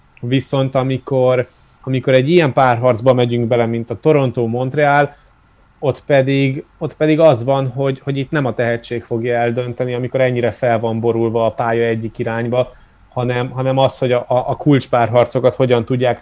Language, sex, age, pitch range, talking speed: Hungarian, male, 30-49, 125-145 Hz, 165 wpm